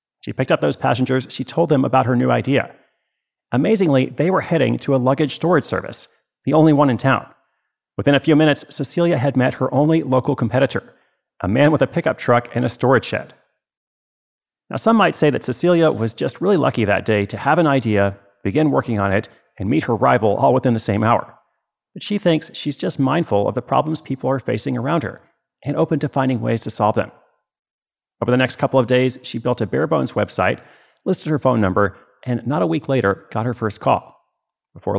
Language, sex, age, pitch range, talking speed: English, male, 30-49, 115-150 Hz, 210 wpm